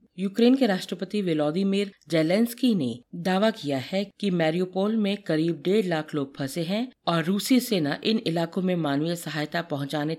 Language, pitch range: Hindi, 145-195 Hz